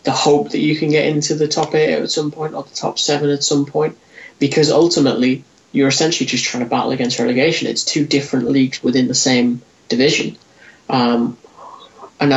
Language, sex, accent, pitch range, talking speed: English, male, British, 130-150 Hz, 195 wpm